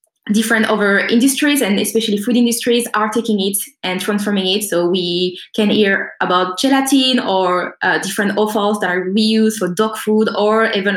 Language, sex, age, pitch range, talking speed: English, female, 20-39, 195-230 Hz, 170 wpm